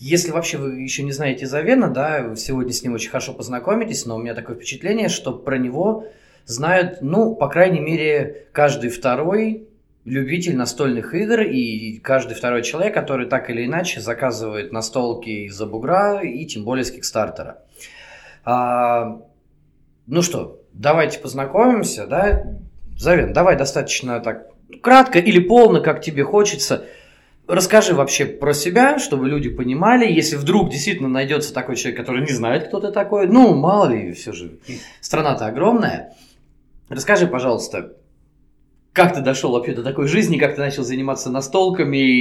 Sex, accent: male, native